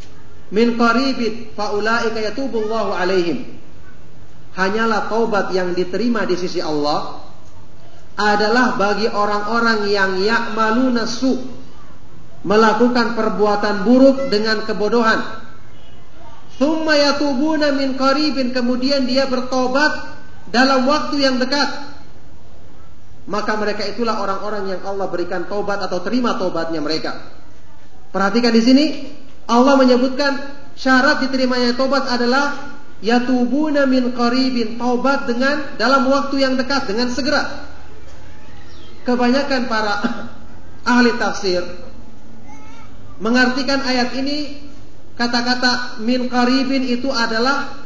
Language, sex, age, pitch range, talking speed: English, male, 40-59, 205-265 Hz, 95 wpm